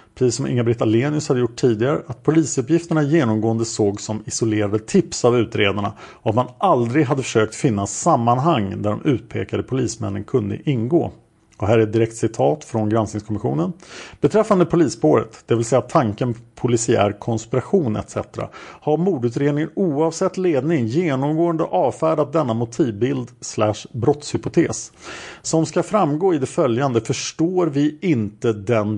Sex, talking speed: male, 135 wpm